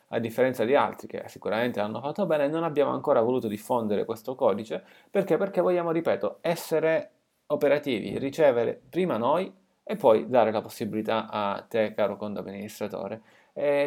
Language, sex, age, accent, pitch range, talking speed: Italian, male, 30-49, native, 110-140 Hz, 155 wpm